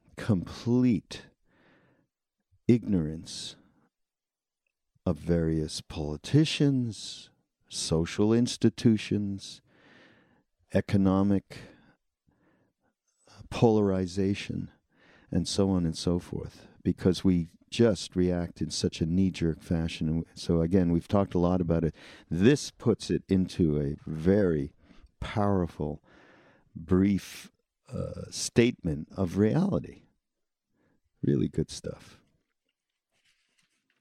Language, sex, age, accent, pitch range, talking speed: English, male, 50-69, American, 80-105 Hz, 85 wpm